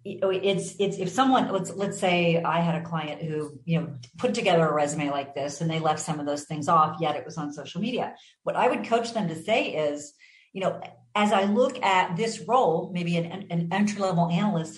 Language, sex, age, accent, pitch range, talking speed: English, female, 40-59, American, 170-210 Hz, 225 wpm